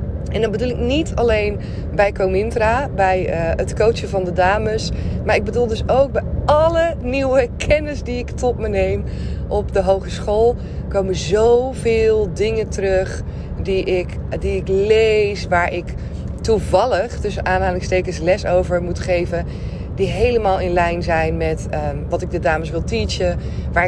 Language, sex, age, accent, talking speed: Dutch, female, 20-39, Dutch, 160 wpm